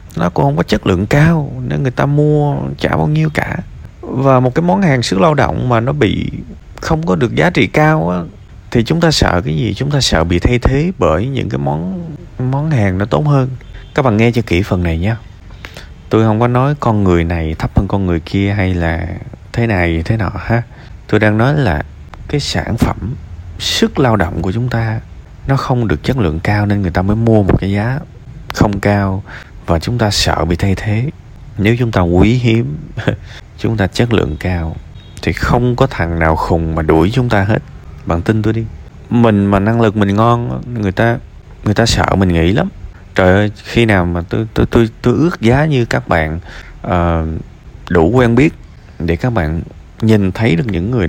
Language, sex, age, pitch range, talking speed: Vietnamese, male, 20-39, 90-120 Hz, 210 wpm